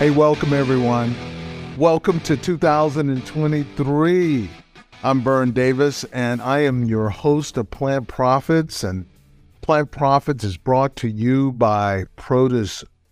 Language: English